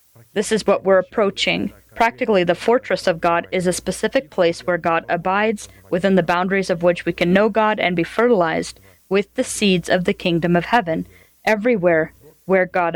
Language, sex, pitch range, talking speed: English, female, 170-205 Hz, 185 wpm